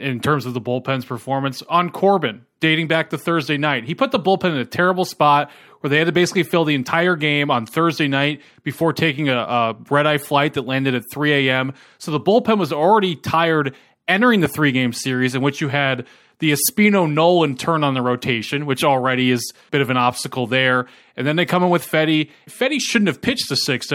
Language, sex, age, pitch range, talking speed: English, male, 20-39, 130-165 Hz, 225 wpm